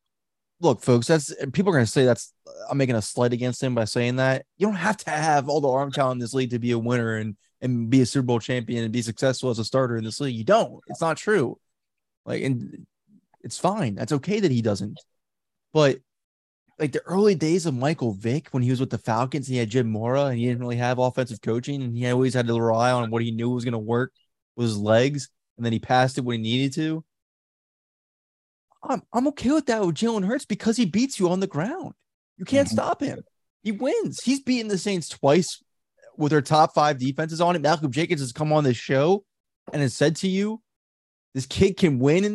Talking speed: 230 wpm